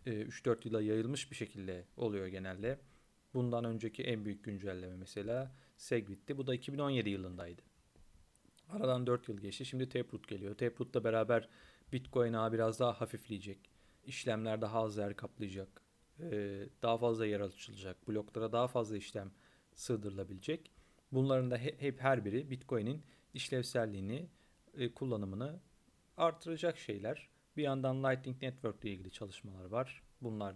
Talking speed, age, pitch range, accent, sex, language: 130 wpm, 40-59, 105-130 Hz, native, male, Turkish